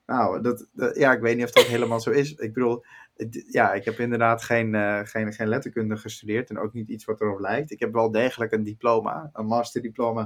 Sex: male